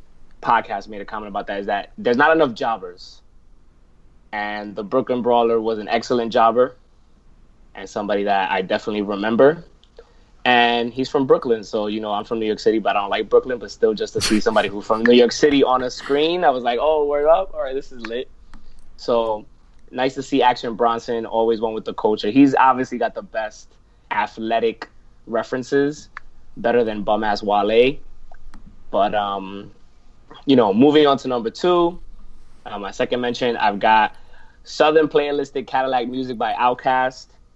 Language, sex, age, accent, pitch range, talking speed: English, male, 20-39, American, 105-130 Hz, 180 wpm